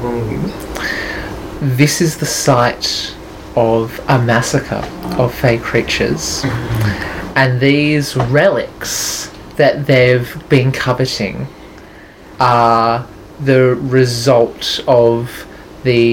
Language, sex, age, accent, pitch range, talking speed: English, male, 20-39, Australian, 115-135 Hz, 80 wpm